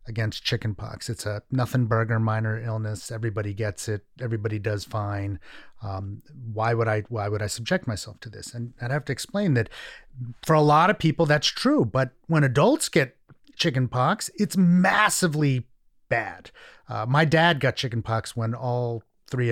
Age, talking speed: 30-49, 170 wpm